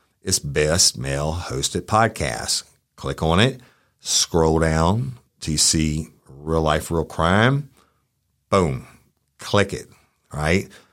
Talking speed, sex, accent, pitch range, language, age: 115 wpm, male, American, 80-95 Hz, English, 50-69